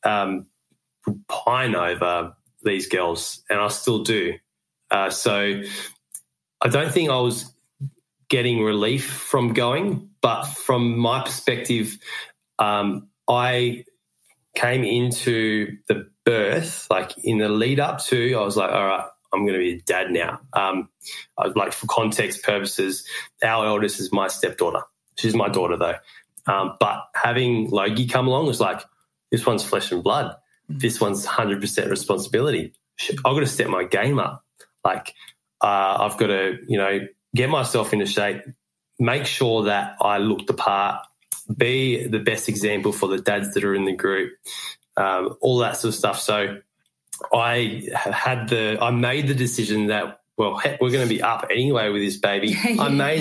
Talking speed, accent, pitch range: 165 wpm, Australian, 100-125 Hz